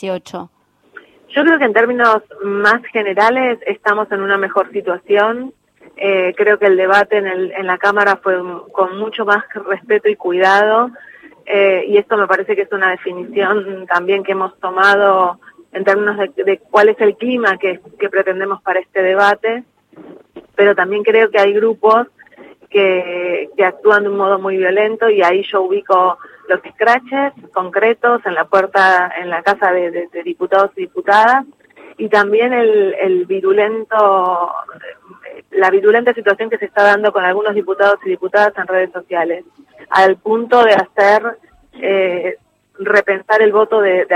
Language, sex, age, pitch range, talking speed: Spanish, female, 30-49, 190-215 Hz, 165 wpm